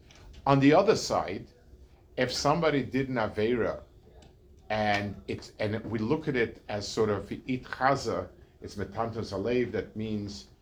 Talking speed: 130 wpm